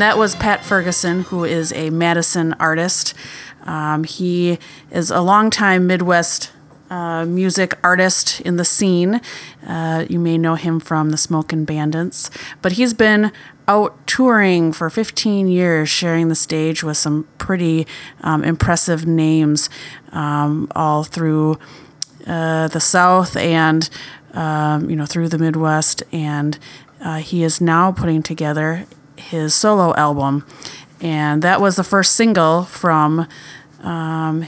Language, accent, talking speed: English, American, 135 wpm